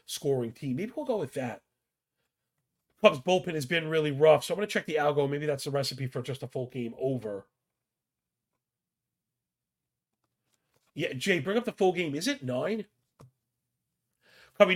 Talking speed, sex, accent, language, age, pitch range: 165 wpm, male, American, English, 40-59, 130-165 Hz